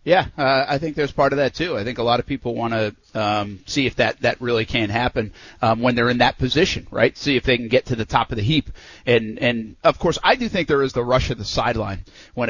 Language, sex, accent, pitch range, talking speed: English, male, American, 110-155 Hz, 280 wpm